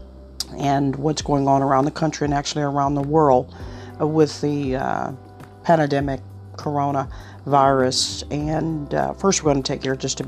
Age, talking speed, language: 50-69, 165 wpm, English